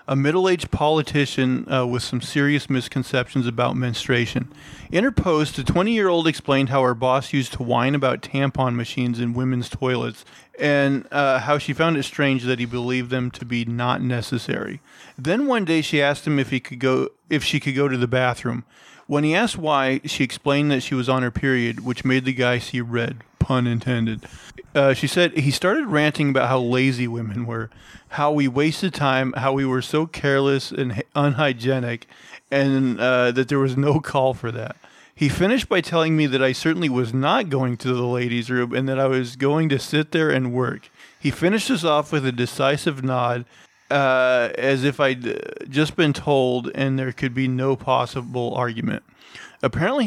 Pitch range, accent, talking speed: 125-145 Hz, American, 190 wpm